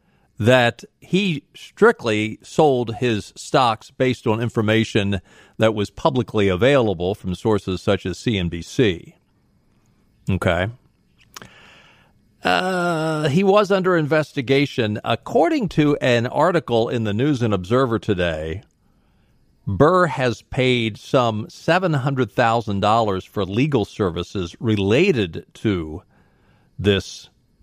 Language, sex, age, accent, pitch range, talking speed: English, male, 50-69, American, 100-130 Hz, 100 wpm